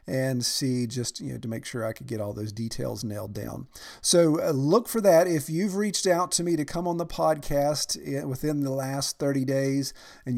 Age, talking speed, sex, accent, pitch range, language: 50-69, 215 wpm, male, American, 120-160 Hz, English